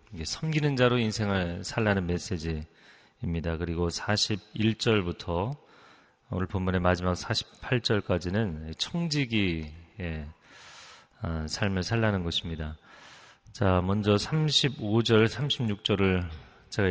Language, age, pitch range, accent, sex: Korean, 30-49, 90-120 Hz, native, male